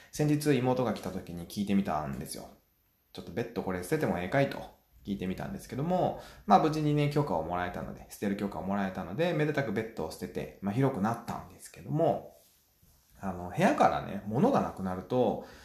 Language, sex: Japanese, male